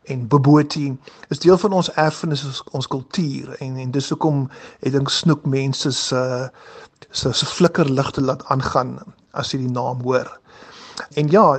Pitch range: 135-165 Hz